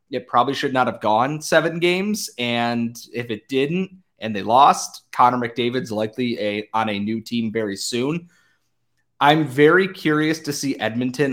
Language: English